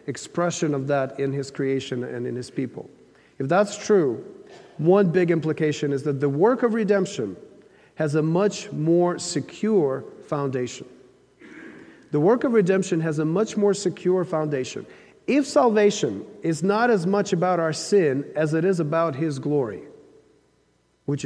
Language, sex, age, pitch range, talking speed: English, male, 40-59, 140-205 Hz, 150 wpm